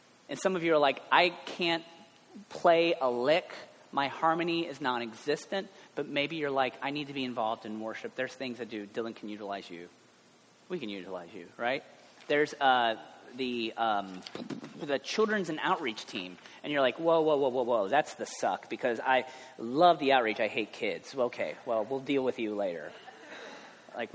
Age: 30-49